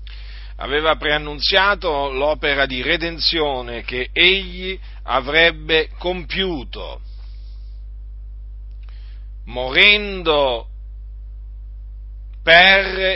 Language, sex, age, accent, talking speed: Italian, male, 50-69, native, 50 wpm